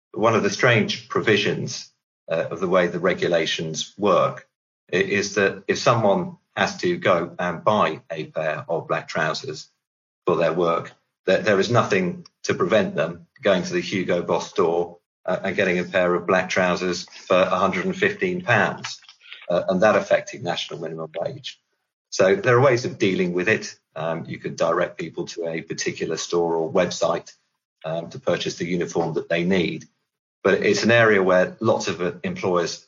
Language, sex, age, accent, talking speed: English, male, 50-69, British, 170 wpm